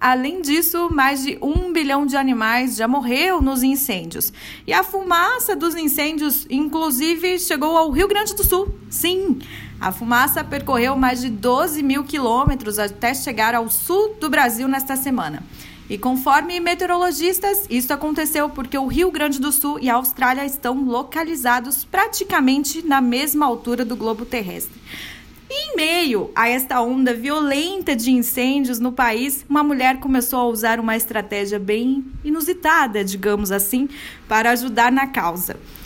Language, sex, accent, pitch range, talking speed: Portuguese, female, Brazilian, 240-315 Hz, 150 wpm